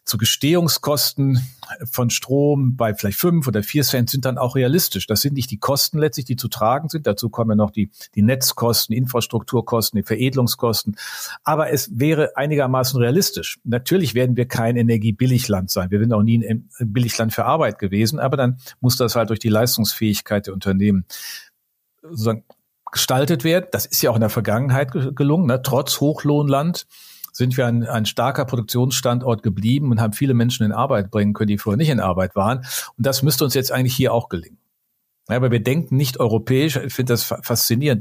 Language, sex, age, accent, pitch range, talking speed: German, male, 50-69, German, 110-130 Hz, 185 wpm